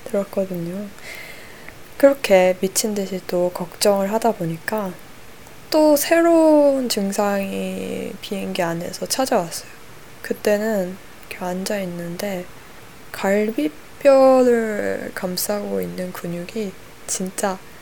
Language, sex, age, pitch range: Korean, female, 20-39, 185-230 Hz